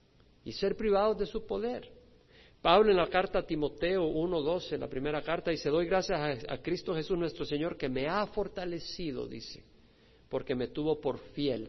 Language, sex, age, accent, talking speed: Spanish, male, 50-69, Mexican, 175 wpm